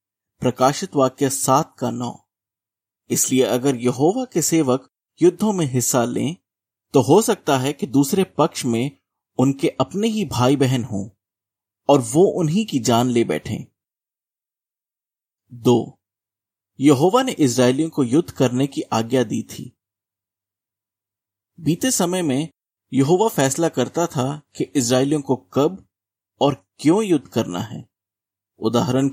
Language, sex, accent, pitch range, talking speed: Hindi, male, native, 105-150 Hz, 130 wpm